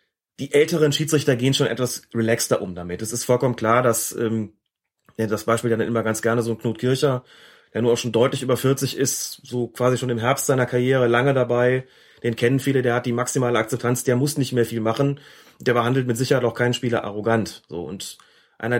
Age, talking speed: 30-49, 215 wpm